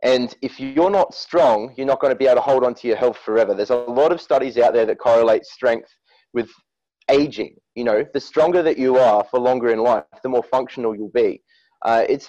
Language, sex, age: English, male, 30-49